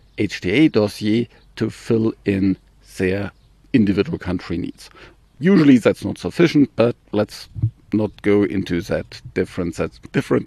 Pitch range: 105-145 Hz